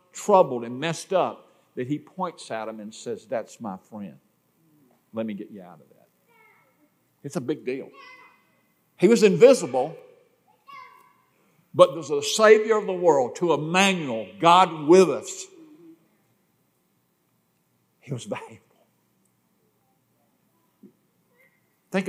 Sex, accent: male, American